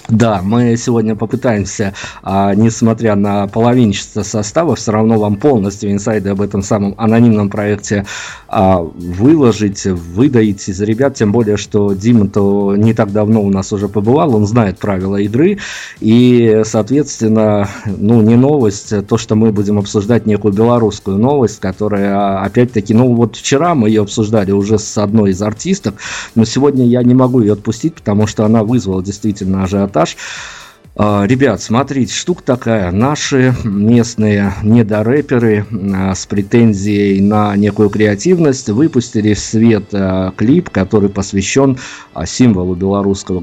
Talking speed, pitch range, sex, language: 140 wpm, 100-115 Hz, male, Russian